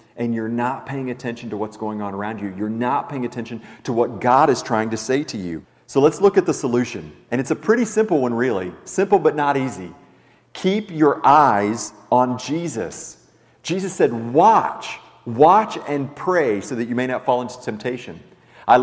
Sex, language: male, English